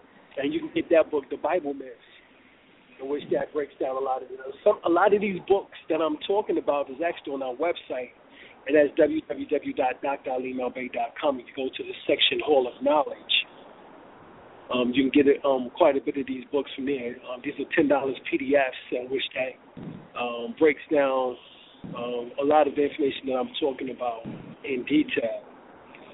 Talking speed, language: 190 wpm, English